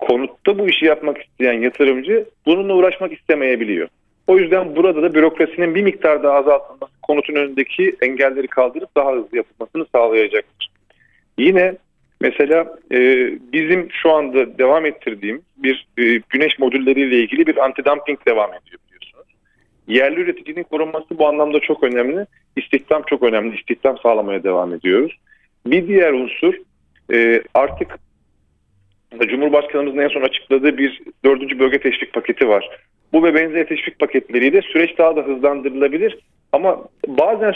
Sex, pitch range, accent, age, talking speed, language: male, 135-180 Hz, native, 40-59, 130 wpm, Turkish